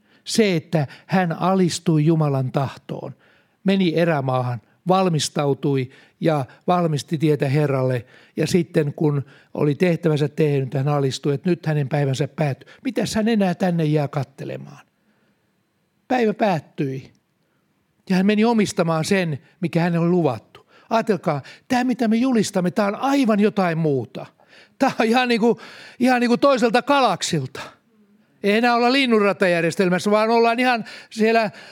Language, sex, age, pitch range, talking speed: Finnish, male, 60-79, 150-205 Hz, 130 wpm